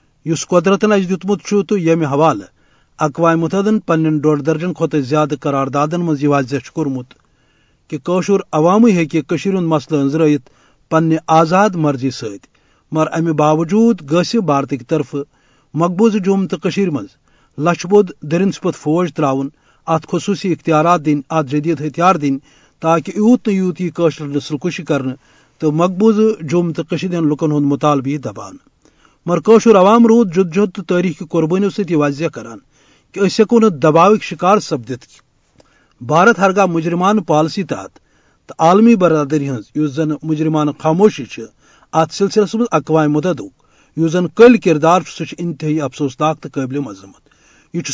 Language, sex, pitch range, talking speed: Urdu, male, 150-190 Hz, 130 wpm